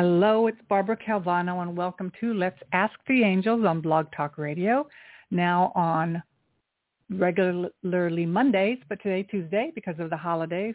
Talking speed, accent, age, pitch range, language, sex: 145 wpm, American, 60-79, 170-210 Hz, English, female